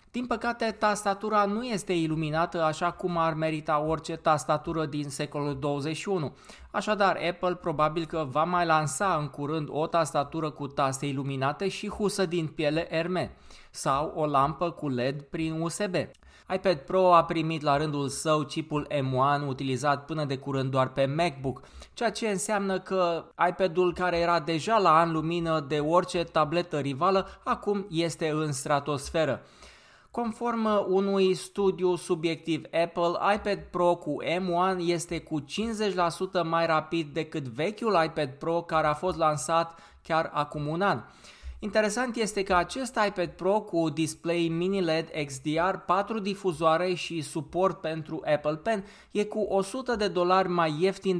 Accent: native